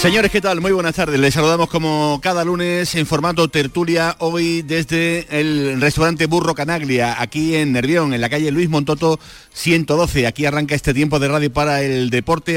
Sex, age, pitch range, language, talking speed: male, 40-59, 125-155 Hz, Spanish, 180 wpm